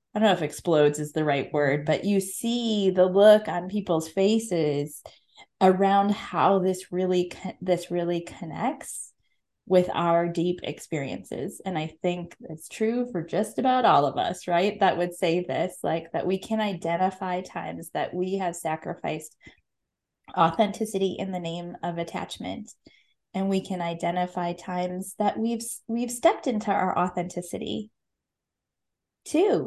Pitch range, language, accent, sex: 175-215 Hz, English, American, female